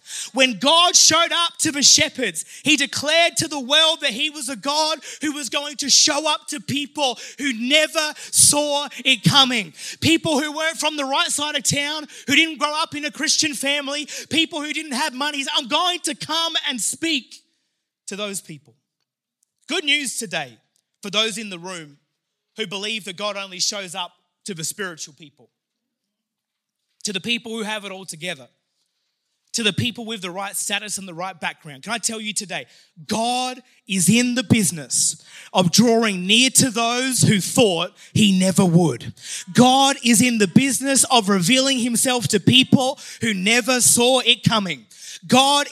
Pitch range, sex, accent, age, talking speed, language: 205-290 Hz, male, Australian, 20-39, 175 wpm, English